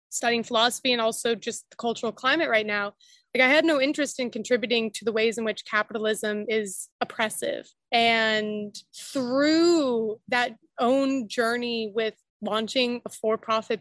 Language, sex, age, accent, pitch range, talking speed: English, female, 20-39, American, 225-265 Hz, 150 wpm